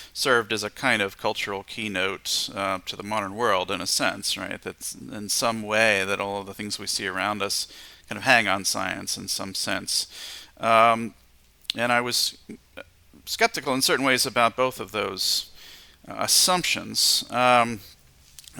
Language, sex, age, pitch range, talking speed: English, male, 40-59, 100-115 Hz, 170 wpm